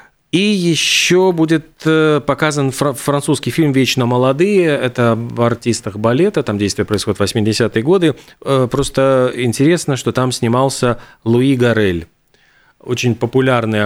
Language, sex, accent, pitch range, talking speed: Russian, male, native, 110-135 Hz, 115 wpm